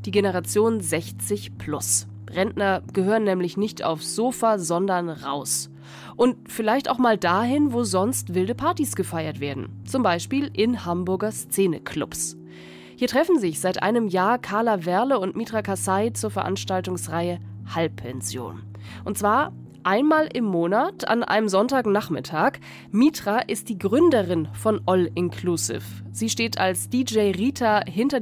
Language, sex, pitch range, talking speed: German, female, 165-235 Hz, 135 wpm